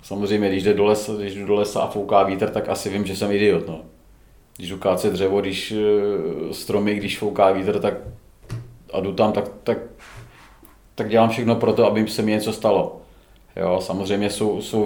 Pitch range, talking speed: 95-105 Hz, 185 wpm